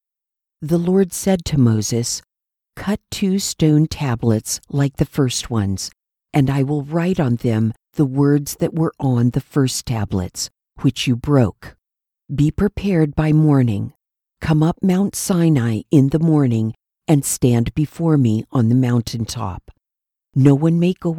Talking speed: 150 wpm